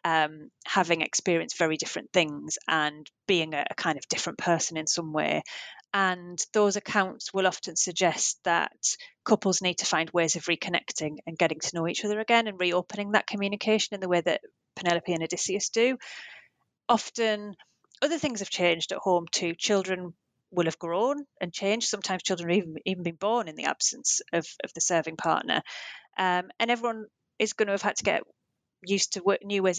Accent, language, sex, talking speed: British, English, female, 185 wpm